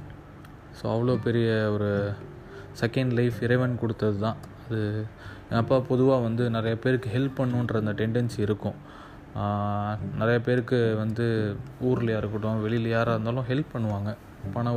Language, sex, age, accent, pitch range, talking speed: Tamil, male, 20-39, native, 105-120 Hz, 130 wpm